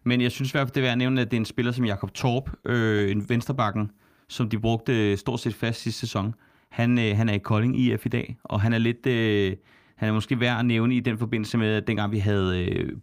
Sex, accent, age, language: male, native, 30-49, Danish